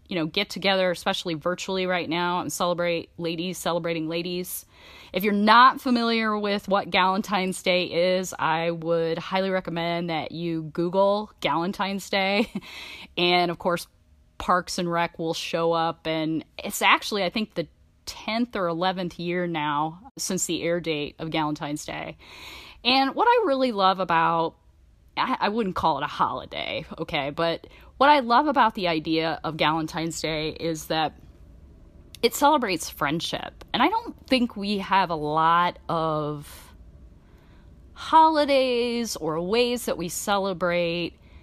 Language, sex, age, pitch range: English, female, 30-49, 155-195 Hz